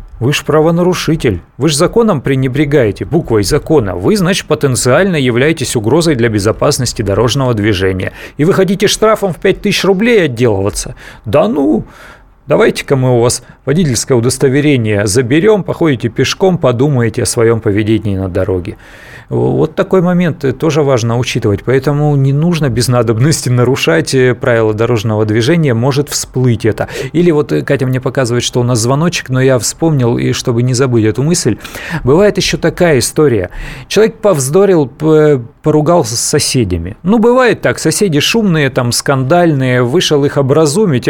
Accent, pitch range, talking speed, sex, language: native, 125-165 Hz, 145 wpm, male, Russian